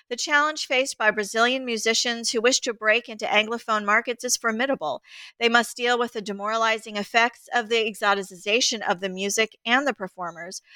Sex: female